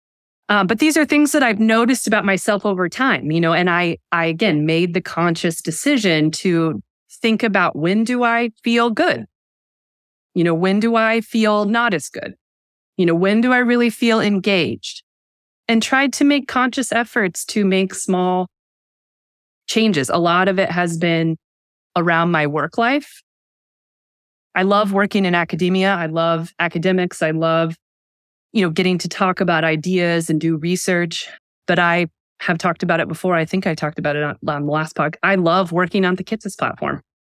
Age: 20-39